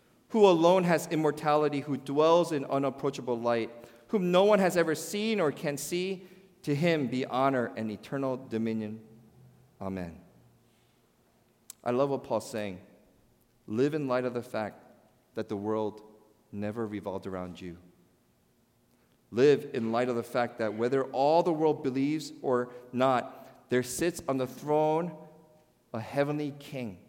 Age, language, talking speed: 40-59, English, 145 wpm